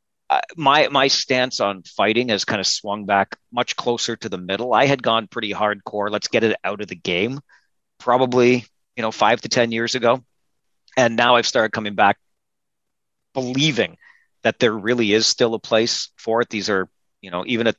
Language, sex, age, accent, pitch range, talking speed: English, male, 40-59, American, 110-130 Hz, 195 wpm